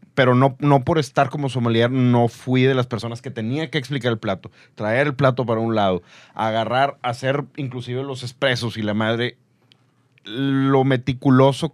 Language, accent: Spanish, Mexican